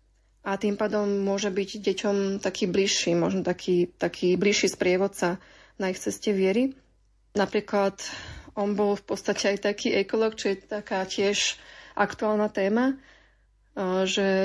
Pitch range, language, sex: 195-215 Hz, Slovak, female